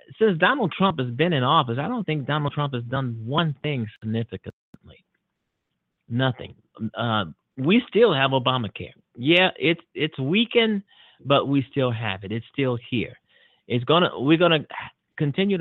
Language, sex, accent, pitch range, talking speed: English, male, American, 115-145 Hz, 160 wpm